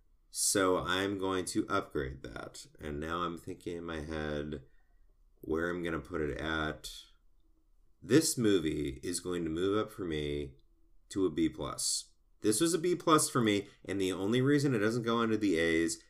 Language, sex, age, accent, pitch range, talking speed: English, male, 30-49, American, 80-110 Hz, 185 wpm